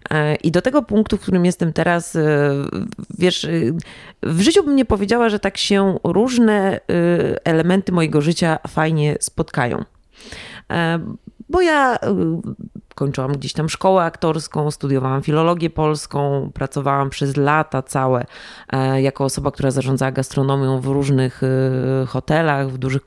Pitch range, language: 145-200 Hz, Polish